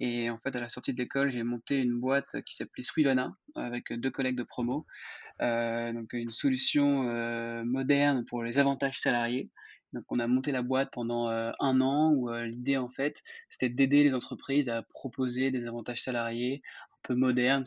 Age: 20-39